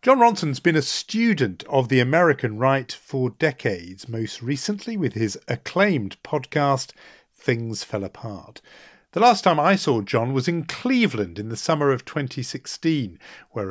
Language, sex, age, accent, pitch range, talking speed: English, male, 50-69, British, 110-170 Hz, 155 wpm